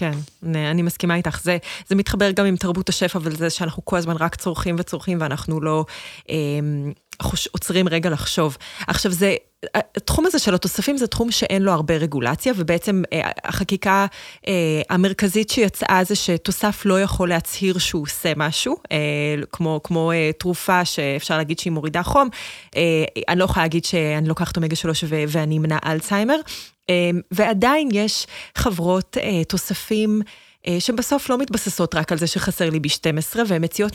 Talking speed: 150 wpm